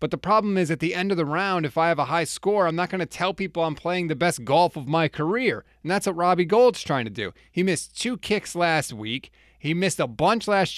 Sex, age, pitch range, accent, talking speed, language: male, 30-49, 155-215 Hz, American, 275 wpm, English